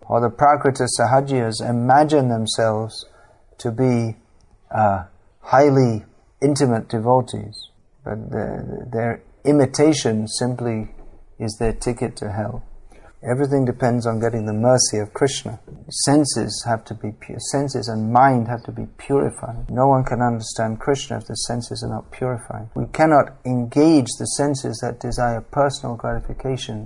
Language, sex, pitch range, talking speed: English, male, 110-130 Hz, 135 wpm